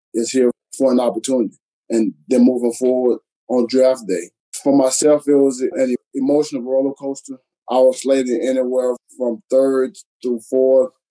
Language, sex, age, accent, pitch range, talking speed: English, male, 20-39, American, 120-135 Hz, 150 wpm